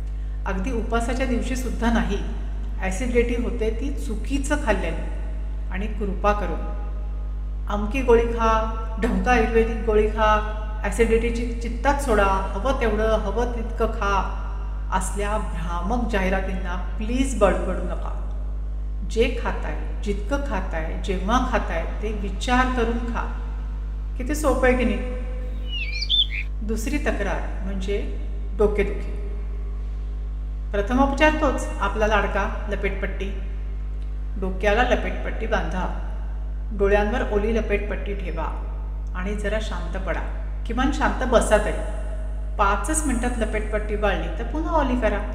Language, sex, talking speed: Marathi, female, 105 wpm